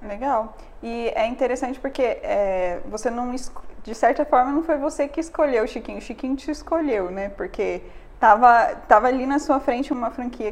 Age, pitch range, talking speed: 10-29, 200-260 Hz, 190 wpm